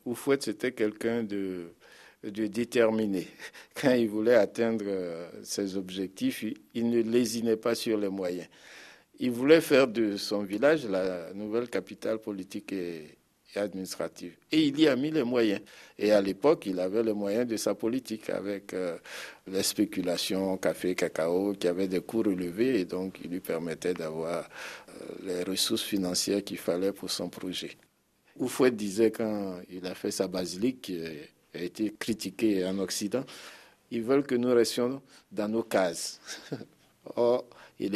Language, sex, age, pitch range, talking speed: French, male, 60-79, 95-115 Hz, 150 wpm